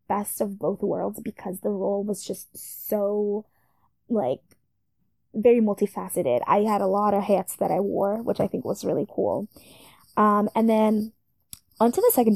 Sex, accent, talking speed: female, American, 165 wpm